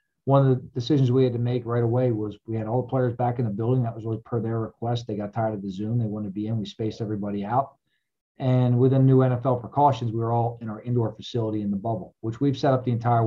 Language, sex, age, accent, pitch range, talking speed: English, male, 40-59, American, 110-125 Hz, 280 wpm